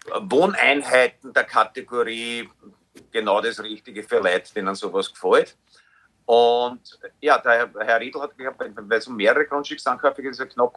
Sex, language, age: male, German, 50-69